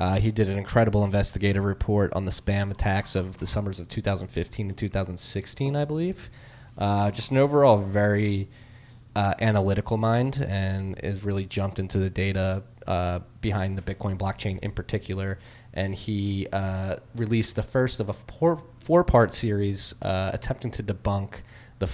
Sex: male